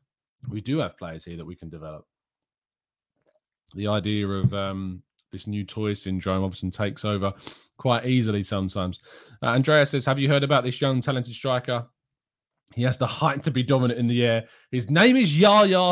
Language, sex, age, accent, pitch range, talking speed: English, male, 20-39, British, 105-130 Hz, 180 wpm